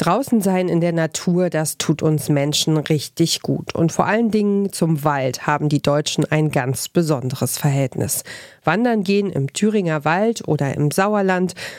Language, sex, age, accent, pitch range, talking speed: German, female, 40-59, German, 155-195 Hz, 165 wpm